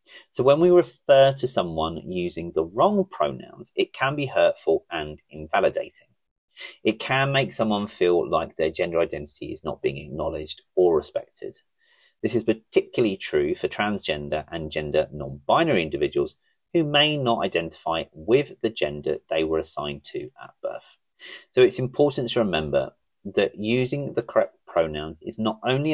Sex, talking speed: male, 155 wpm